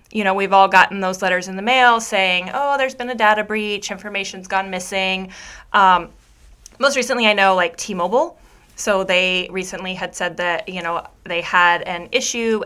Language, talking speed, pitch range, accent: English, 185 wpm, 185-245 Hz, American